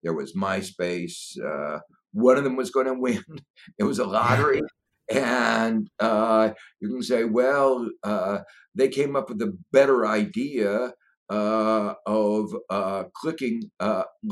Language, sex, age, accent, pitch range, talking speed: English, male, 60-79, American, 105-170 Hz, 145 wpm